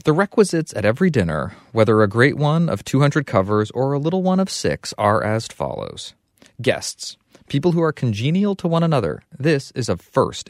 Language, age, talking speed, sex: English, 30-49, 190 wpm, male